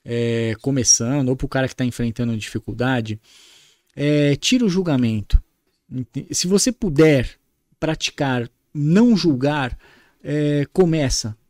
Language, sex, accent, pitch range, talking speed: Portuguese, male, Brazilian, 135-180 Hz, 100 wpm